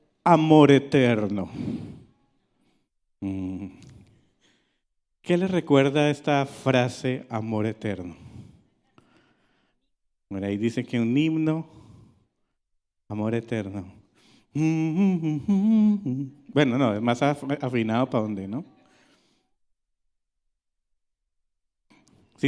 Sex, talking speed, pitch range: male, 70 wpm, 120-170 Hz